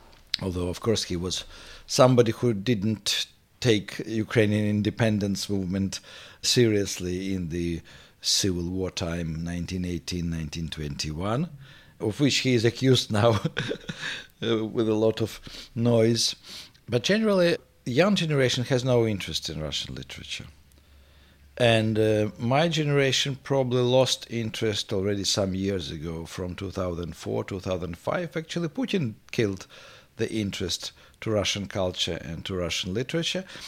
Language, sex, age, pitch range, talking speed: English, male, 50-69, 95-135 Hz, 120 wpm